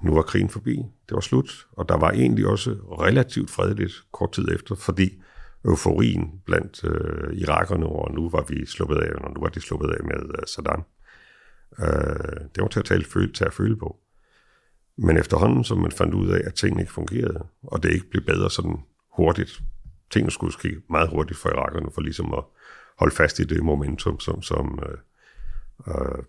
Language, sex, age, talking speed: Danish, male, 60-79, 185 wpm